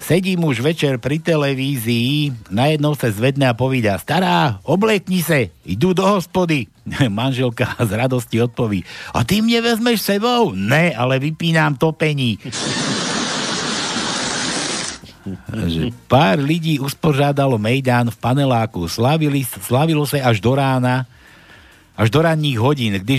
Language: Slovak